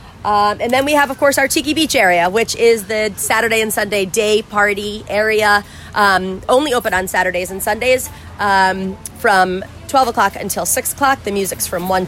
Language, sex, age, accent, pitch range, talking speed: English, female, 30-49, American, 180-210 Hz, 190 wpm